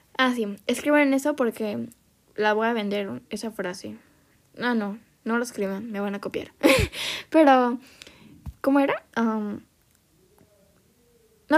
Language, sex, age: Spanish, female, 10-29